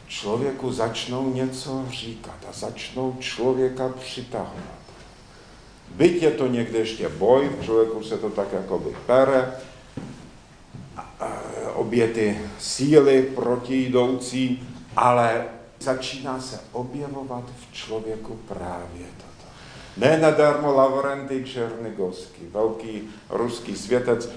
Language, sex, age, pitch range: Czech, male, 70-89, 100-130 Hz